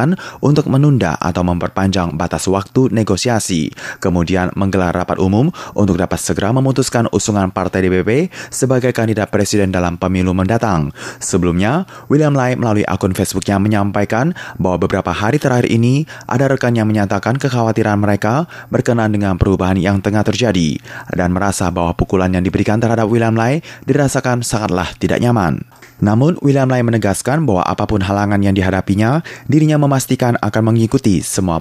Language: German